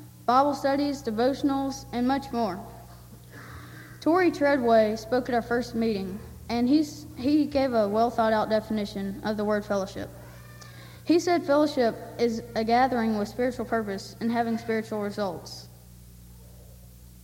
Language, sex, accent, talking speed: English, female, American, 130 wpm